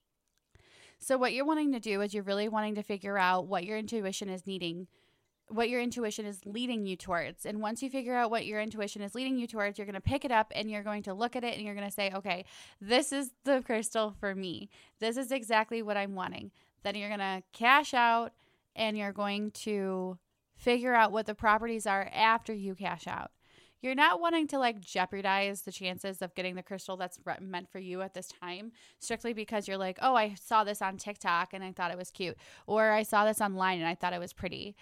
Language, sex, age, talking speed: English, female, 20-39, 230 wpm